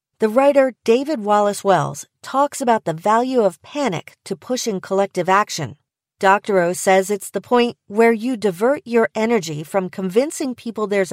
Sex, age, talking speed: female, 40-59, 155 wpm